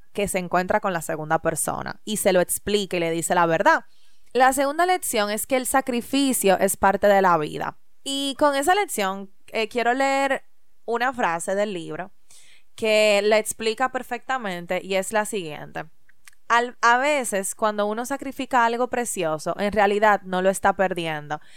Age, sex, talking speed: 20-39, female, 170 wpm